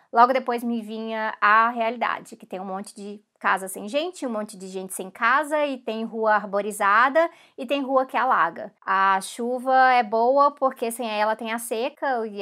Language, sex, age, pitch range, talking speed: Portuguese, female, 20-39, 210-255 Hz, 195 wpm